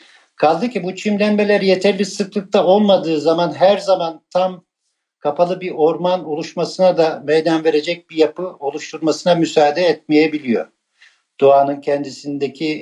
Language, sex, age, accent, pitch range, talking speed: Turkish, male, 60-79, native, 145-180 Hz, 115 wpm